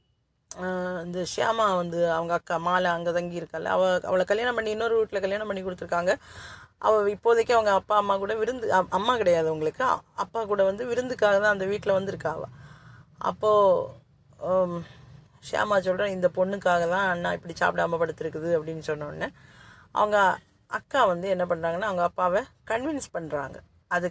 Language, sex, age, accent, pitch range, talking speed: Tamil, female, 30-49, native, 165-195 Hz, 140 wpm